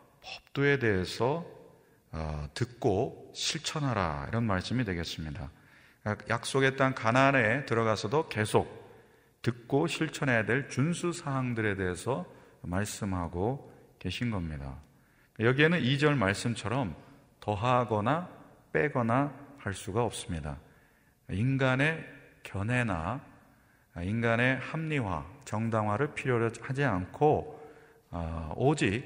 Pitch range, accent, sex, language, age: 95-140 Hz, native, male, Korean, 40-59